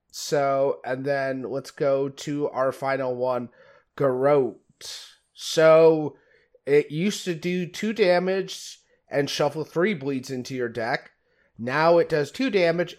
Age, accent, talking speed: 30-49, American, 135 wpm